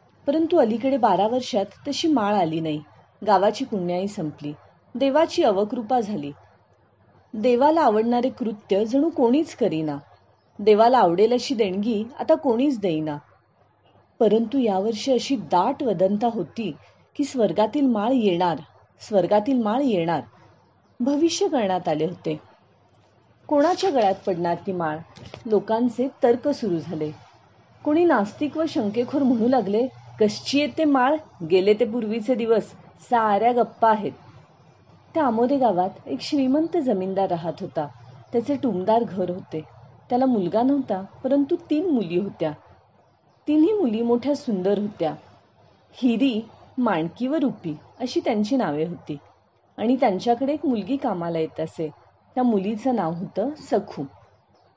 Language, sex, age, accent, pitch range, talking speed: Marathi, female, 30-49, native, 160-260 Hz, 125 wpm